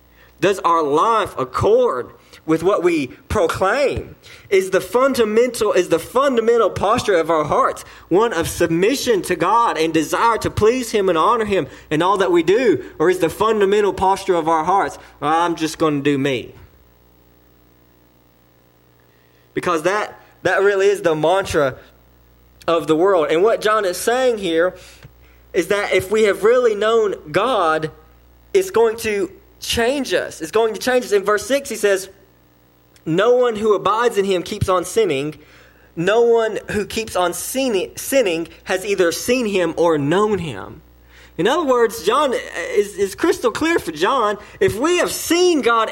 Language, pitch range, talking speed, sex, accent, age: English, 155-255 Hz, 165 wpm, male, American, 20-39